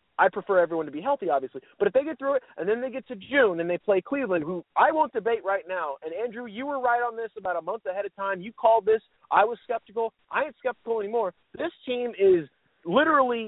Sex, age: male, 30-49